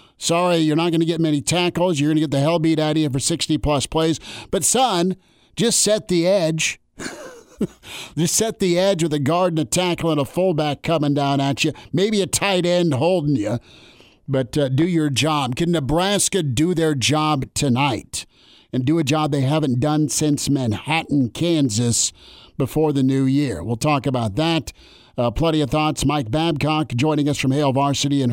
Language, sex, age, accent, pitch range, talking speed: English, male, 50-69, American, 135-160 Hz, 195 wpm